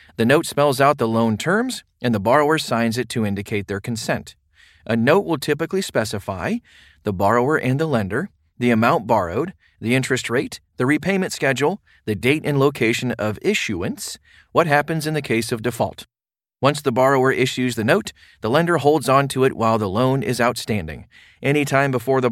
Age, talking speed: 40-59, 180 wpm